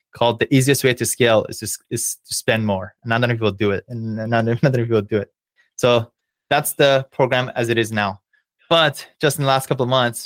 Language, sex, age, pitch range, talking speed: English, male, 20-39, 115-130 Hz, 235 wpm